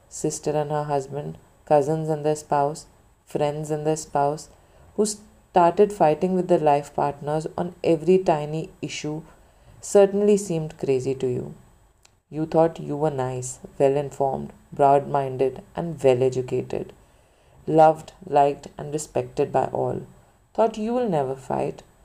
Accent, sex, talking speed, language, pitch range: native, female, 140 wpm, Hindi, 140-170 Hz